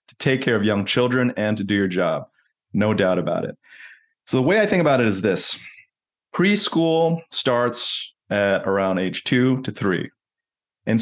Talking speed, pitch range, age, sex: 180 wpm, 105-135 Hz, 30-49, male